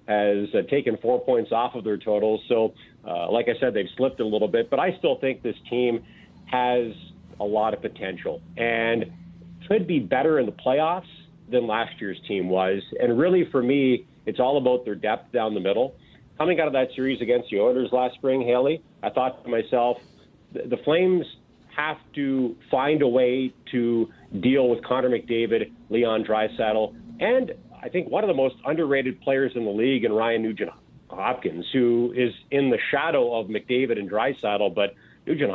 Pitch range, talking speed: 115-140 Hz, 190 wpm